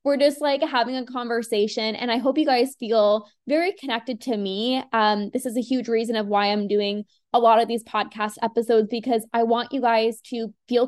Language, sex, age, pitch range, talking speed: English, female, 10-29, 210-265 Hz, 215 wpm